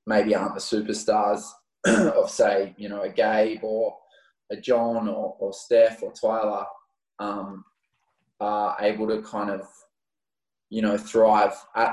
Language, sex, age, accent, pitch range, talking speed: English, male, 20-39, Australian, 105-115 Hz, 140 wpm